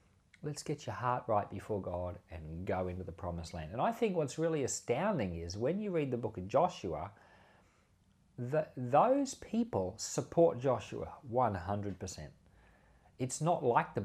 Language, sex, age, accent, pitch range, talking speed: English, male, 40-59, Australian, 95-135 Hz, 155 wpm